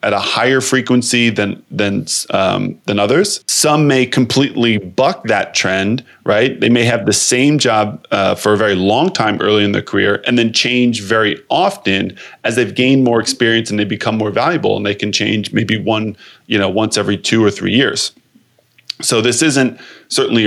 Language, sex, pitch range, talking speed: English, male, 105-125 Hz, 190 wpm